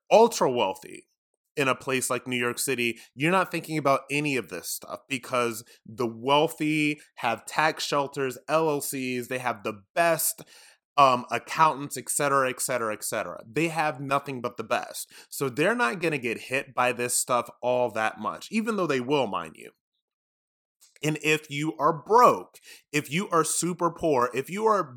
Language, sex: English, male